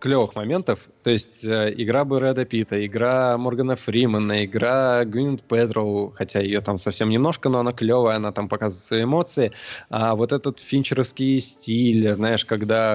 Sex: male